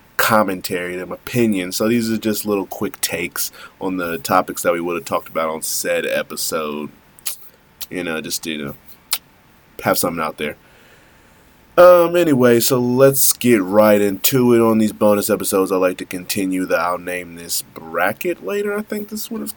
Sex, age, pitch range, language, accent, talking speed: male, 20-39, 85-120 Hz, English, American, 180 wpm